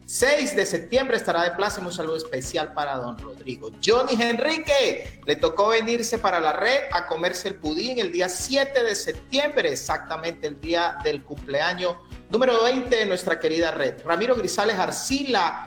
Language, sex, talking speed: Spanish, male, 165 wpm